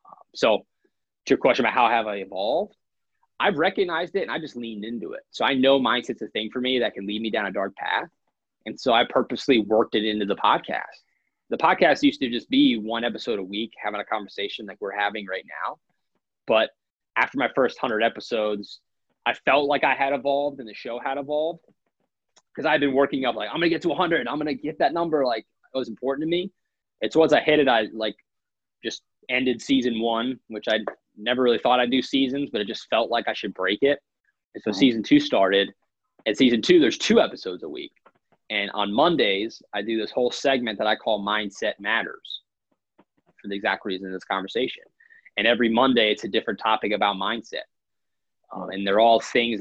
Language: English